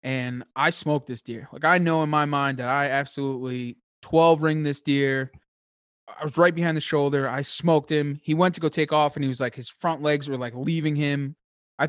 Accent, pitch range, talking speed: American, 130-160 Hz, 225 wpm